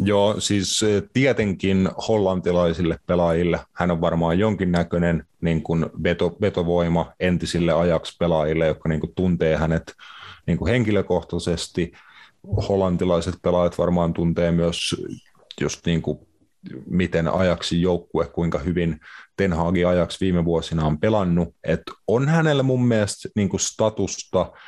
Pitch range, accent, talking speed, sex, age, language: 85-95 Hz, native, 95 wpm, male, 30-49, Finnish